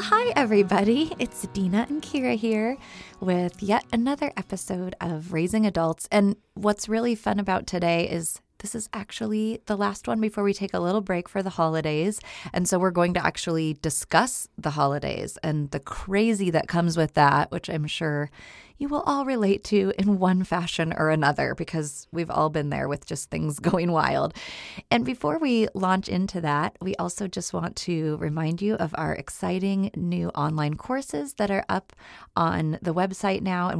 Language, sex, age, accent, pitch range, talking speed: English, female, 30-49, American, 155-200 Hz, 180 wpm